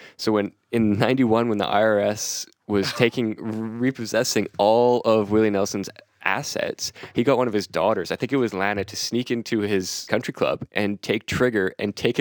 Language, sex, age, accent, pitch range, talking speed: English, male, 20-39, American, 100-120 Hz, 180 wpm